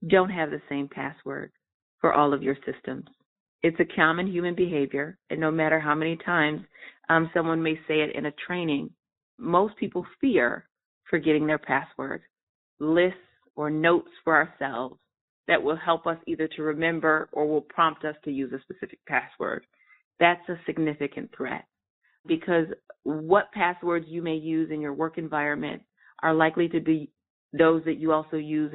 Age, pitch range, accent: 30-49, 155-185 Hz, American